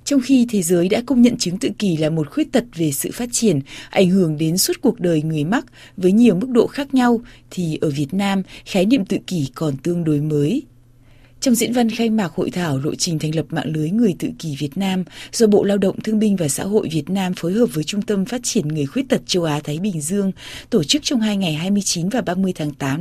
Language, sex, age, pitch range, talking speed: Vietnamese, female, 20-39, 155-220 Hz, 255 wpm